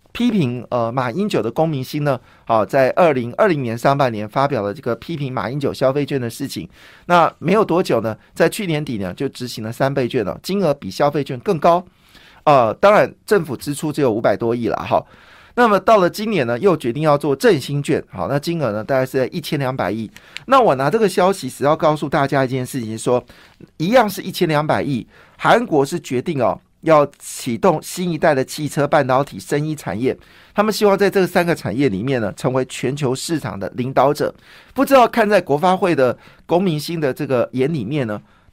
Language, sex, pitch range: Chinese, male, 125-170 Hz